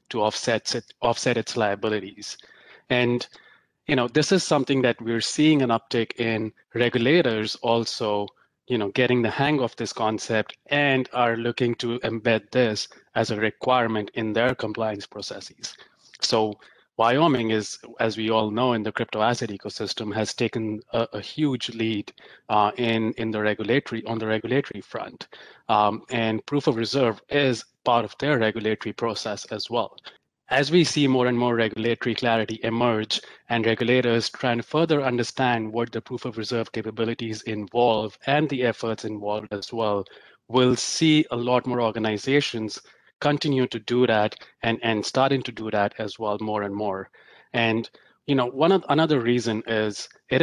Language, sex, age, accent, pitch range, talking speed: English, male, 30-49, Indian, 110-125 Hz, 165 wpm